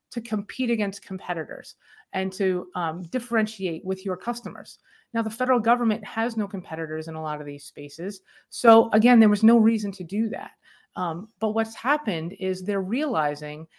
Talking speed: 175 wpm